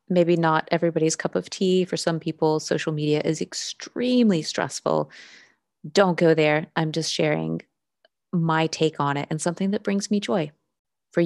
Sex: female